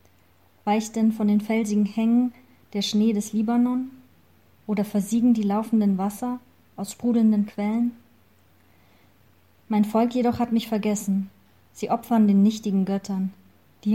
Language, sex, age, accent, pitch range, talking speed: German, female, 30-49, German, 195-225 Hz, 130 wpm